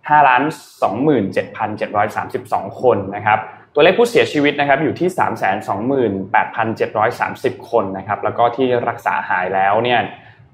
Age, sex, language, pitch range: 20-39, male, Thai, 110-140 Hz